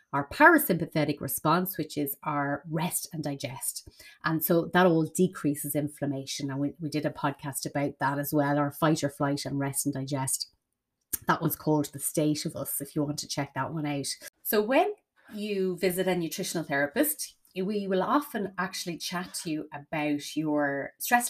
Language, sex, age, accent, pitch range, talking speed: English, female, 30-49, Irish, 145-190 Hz, 185 wpm